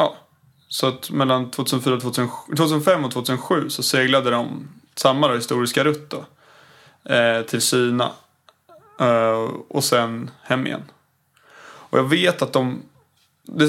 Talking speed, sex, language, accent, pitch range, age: 125 wpm, male, Swedish, native, 125-145 Hz, 20-39